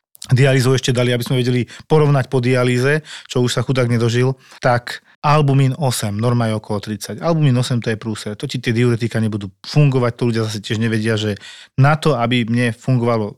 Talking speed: 195 wpm